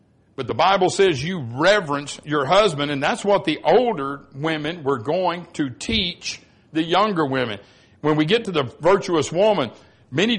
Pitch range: 130-170 Hz